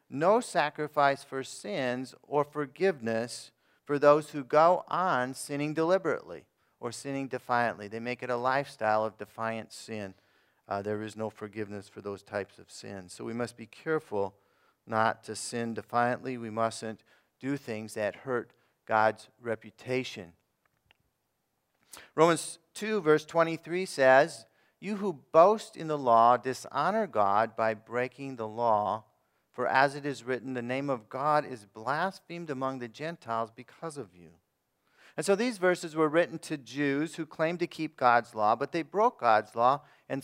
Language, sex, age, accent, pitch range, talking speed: English, male, 40-59, American, 115-150 Hz, 155 wpm